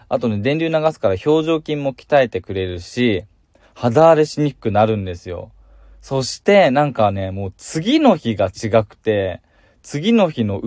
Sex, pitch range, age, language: male, 95-145 Hz, 20-39, Japanese